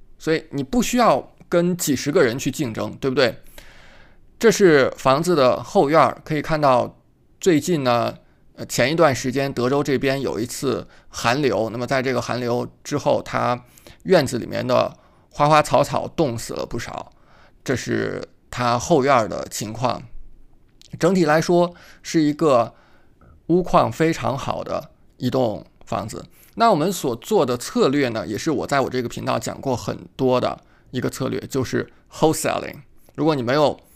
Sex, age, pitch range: male, 20-39, 120-155 Hz